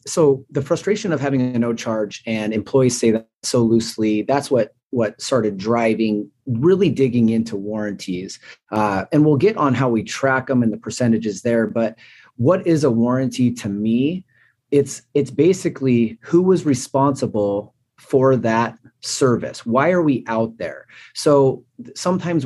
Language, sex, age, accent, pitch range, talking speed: English, male, 30-49, American, 115-145 Hz, 160 wpm